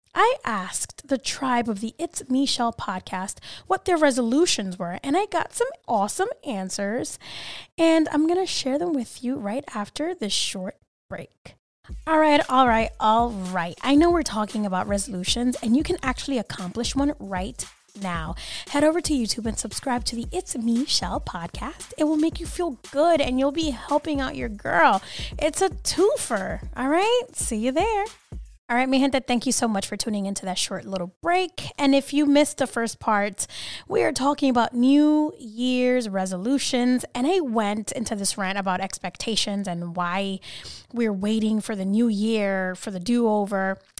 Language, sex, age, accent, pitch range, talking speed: English, female, 10-29, American, 205-290 Hz, 180 wpm